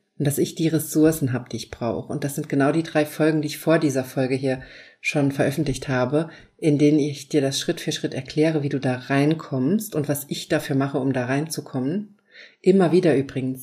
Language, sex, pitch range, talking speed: German, female, 140-165 Hz, 215 wpm